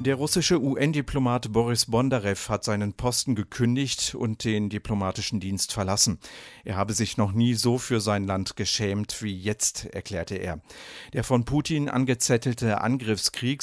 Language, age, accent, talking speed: English, 50-69, German, 145 wpm